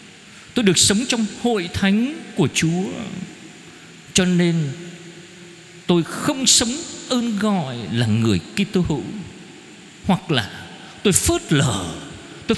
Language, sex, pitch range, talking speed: Vietnamese, male, 145-220 Hz, 120 wpm